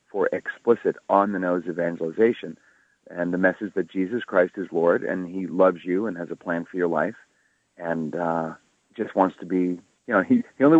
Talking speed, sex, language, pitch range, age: 190 wpm, male, English, 85-110 Hz, 40-59